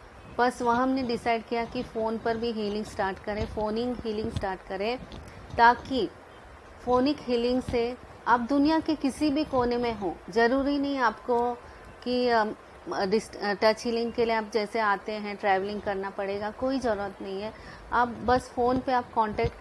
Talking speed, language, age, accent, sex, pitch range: 160 wpm, Hindi, 30-49, native, female, 210-240 Hz